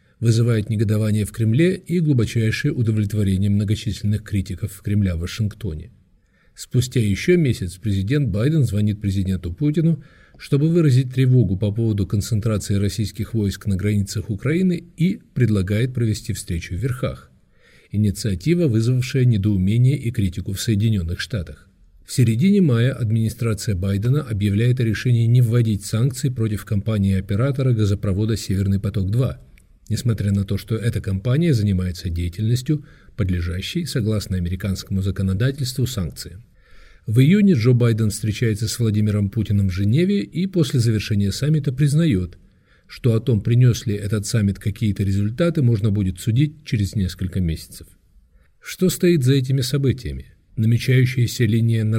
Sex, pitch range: male, 100-125 Hz